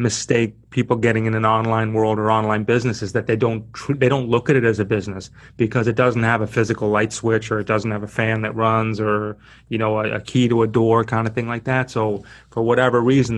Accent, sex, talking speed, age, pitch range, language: American, male, 255 wpm, 30-49, 110-130 Hz, English